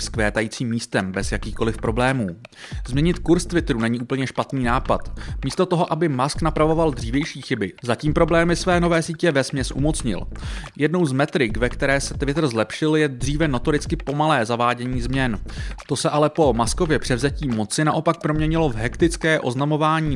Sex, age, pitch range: male, 30-49, 120-160 Hz